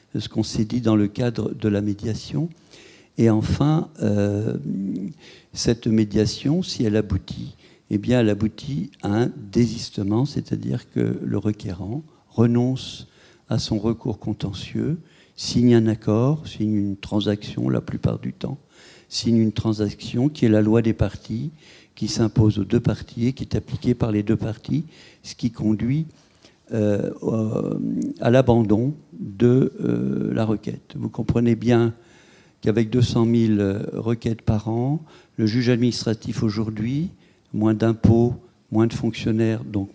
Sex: male